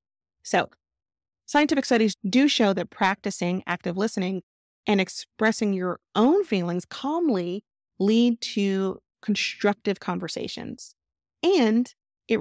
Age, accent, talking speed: 30-49, American, 100 wpm